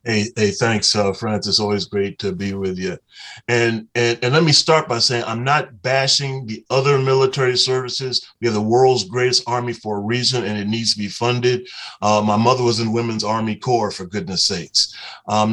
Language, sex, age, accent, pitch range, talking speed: English, male, 30-49, American, 110-130 Hz, 205 wpm